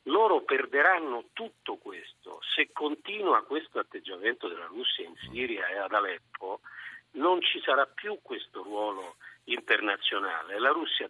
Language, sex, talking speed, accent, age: Italian, male, 130 wpm, native, 50-69